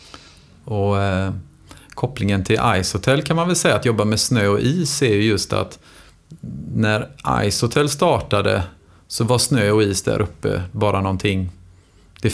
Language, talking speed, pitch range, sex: English, 155 wpm, 95-120 Hz, male